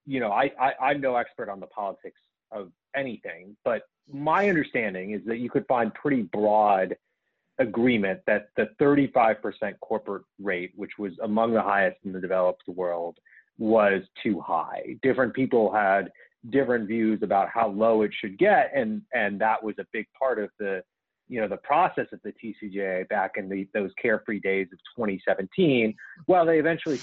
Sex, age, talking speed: male, 30-49, 175 wpm